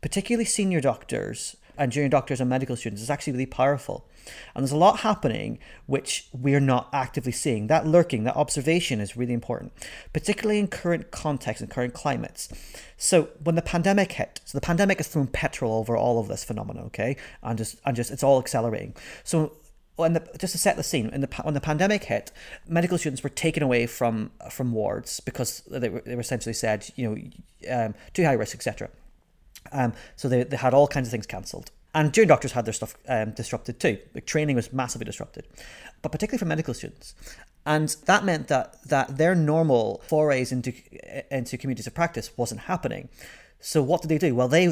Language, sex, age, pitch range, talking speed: English, male, 30-49, 120-160 Hz, 200 wpm